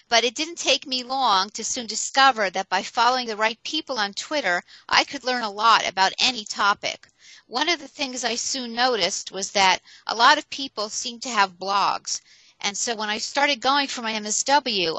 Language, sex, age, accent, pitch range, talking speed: English, female, 50-69, American, 195-250 Hz, 205 wpm